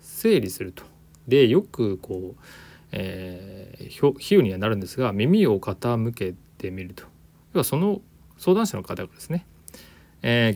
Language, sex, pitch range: Japanese, male, 95-130 Hz